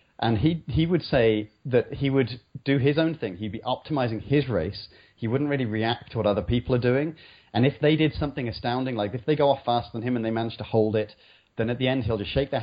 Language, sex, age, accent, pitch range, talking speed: English, male, 30-49, British, 105-130 Hz, 260 wpm